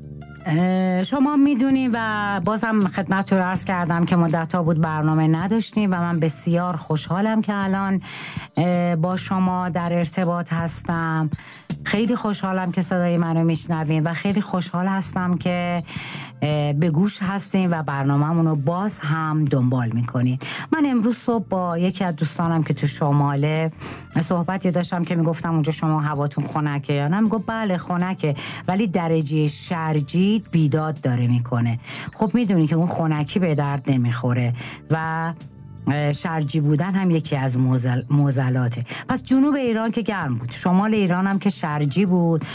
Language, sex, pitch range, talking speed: Persian, female, 145-185 Hz, 145 wpm